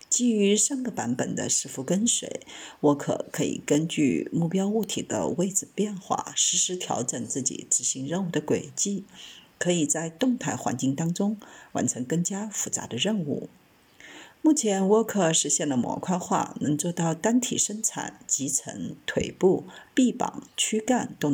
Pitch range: 170-230 Hz